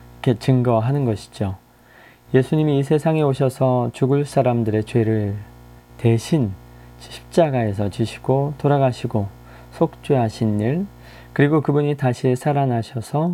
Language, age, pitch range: Korean, 20-39, 110-140 Hz